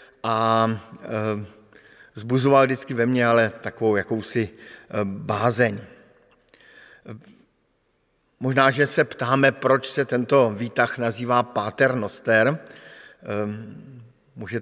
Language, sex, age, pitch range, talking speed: Slovak, male, 50-69, 110-135 Hz, 85 wpm